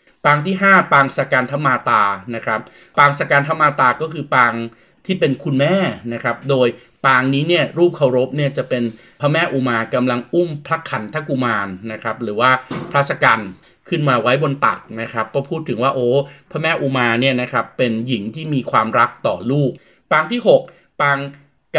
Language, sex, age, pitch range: Thai, male, 30-49, 115-140 Hz